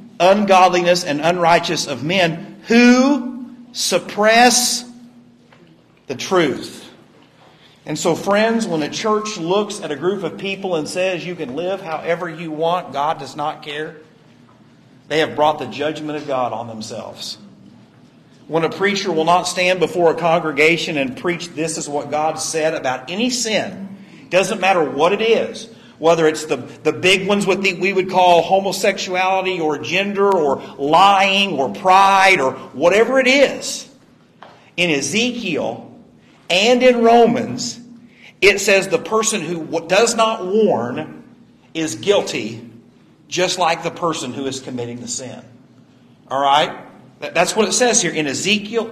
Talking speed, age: 150 wpm, 50-69